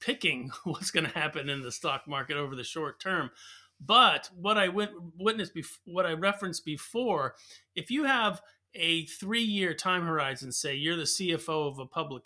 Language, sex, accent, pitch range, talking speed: English, male, American, 155-205 Hz, 175 wpm